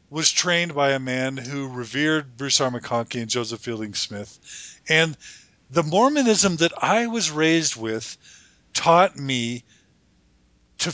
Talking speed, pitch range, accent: 135 wpm, 125-170 Hz, American